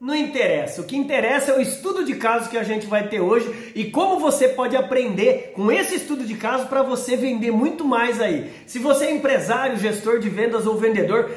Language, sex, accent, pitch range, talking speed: Portuguese, male, Brazilian, 220-270 Hz, 215 wpm